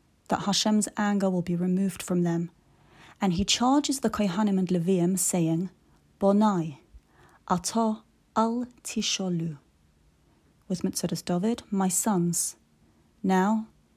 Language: English